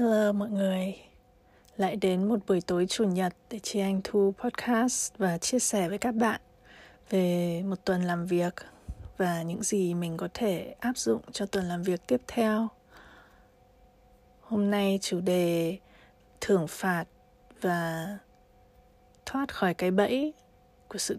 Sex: female